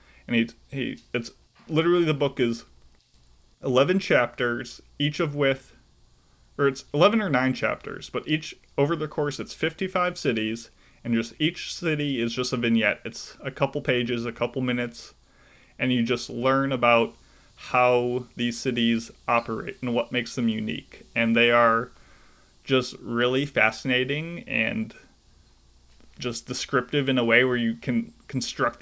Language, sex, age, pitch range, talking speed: English, male, 20-39, 115-135 Hz, 150 wpm